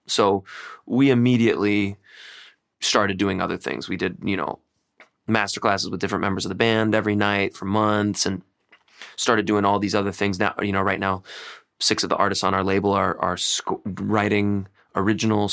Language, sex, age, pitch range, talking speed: English, male, 20-39, 95-110 Hz, 180 wpm